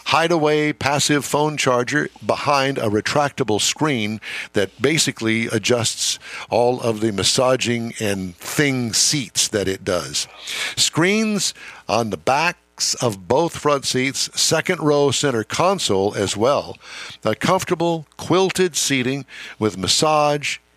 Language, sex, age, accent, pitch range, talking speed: English, male, 50-69, American, 100-145 Hz, 120 wpm